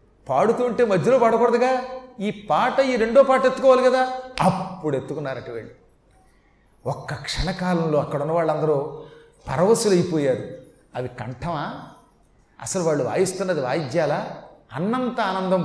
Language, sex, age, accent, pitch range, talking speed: Telugu, male, 30-49, native, 145-200 Hz, 115 wpm